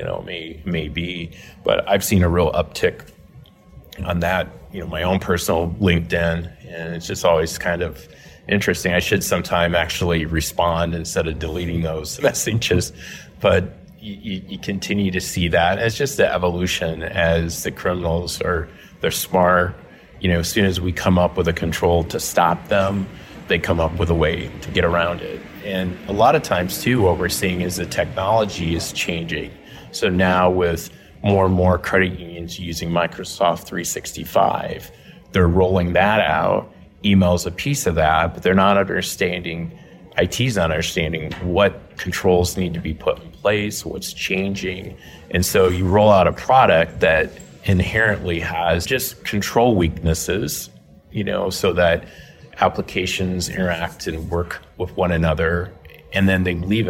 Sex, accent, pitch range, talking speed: male, American, 85-95 Hz, 165 wpm